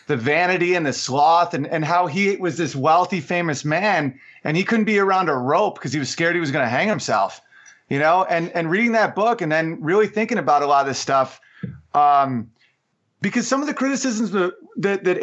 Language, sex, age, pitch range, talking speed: English, male, 30-49, 140-180 Hz, 220 wpm